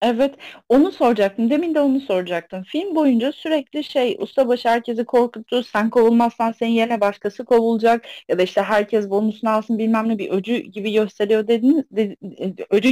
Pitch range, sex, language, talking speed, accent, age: 225-310 Hz, female, Turkish, 160 wpm, native, 30-49